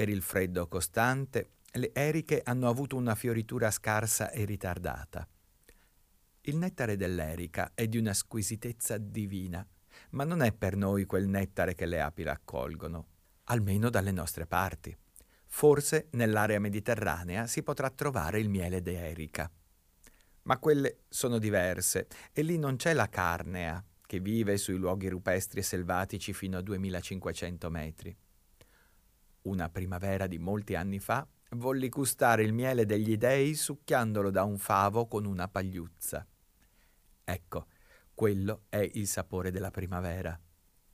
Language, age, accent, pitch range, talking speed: Italian, 50-69, native, 90-115 Hz, 135 wpm